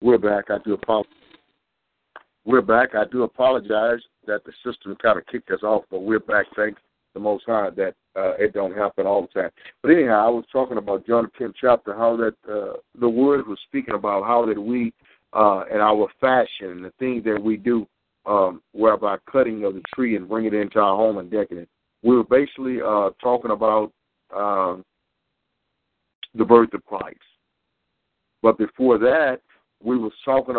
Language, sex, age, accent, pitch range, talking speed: English, male, 60-79, American, 110-140 Hz, 185 wpm